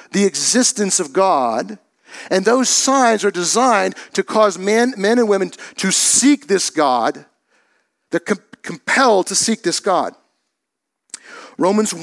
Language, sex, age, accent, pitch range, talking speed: English, male, 50-69, American, 165-215 Hz, 135 wpm